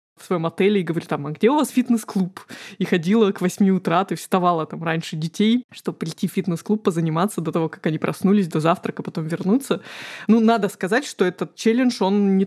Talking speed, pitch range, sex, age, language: 205 wpm, 175-210 Hz, female, 20-39, Russian